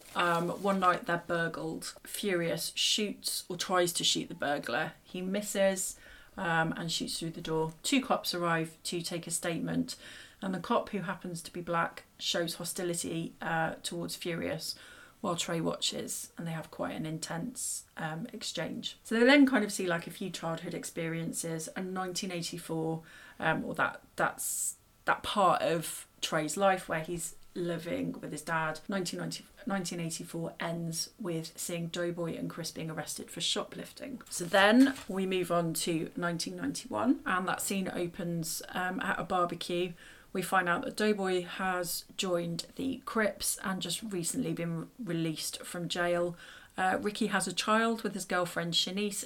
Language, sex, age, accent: English, female, 30-49, British